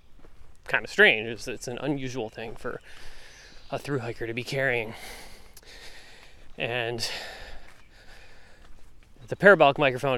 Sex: male